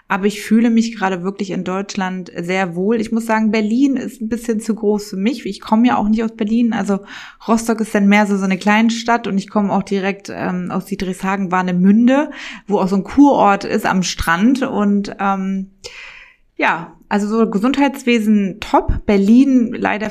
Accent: German